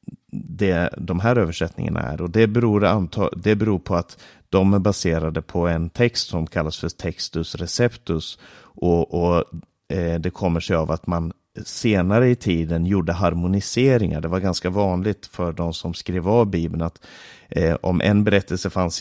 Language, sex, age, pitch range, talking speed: Swedish, male, 30-49, 85-110 Hz, 150 wpm